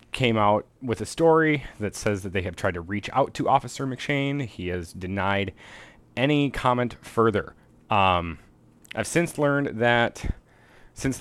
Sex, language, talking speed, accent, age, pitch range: male, English, 155 wpm, American, 30-49, 95-115 Hz